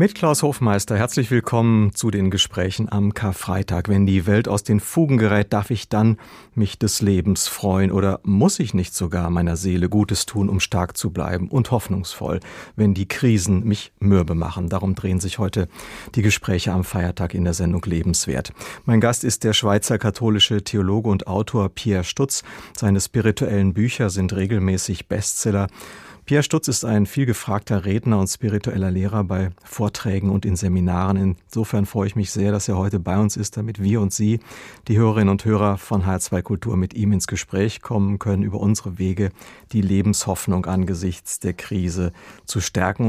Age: 40-59